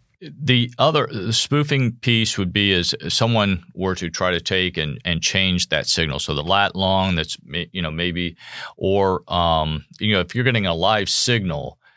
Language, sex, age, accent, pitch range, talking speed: English, male, 50-69, American, 85-115 Hz, 190 wpm